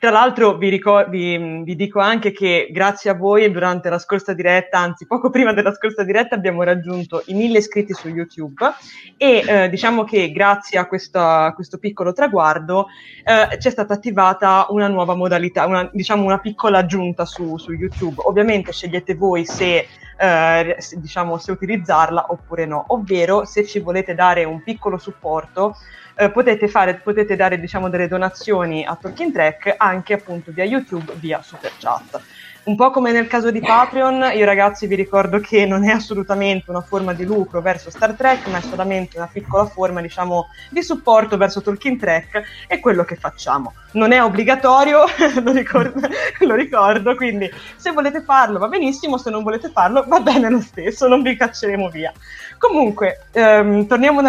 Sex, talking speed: female, 175 wpm